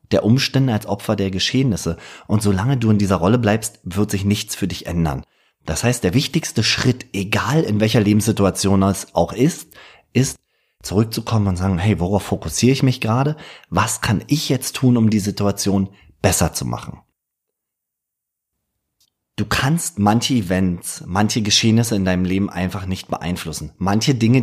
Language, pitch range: German, 90-115 Hz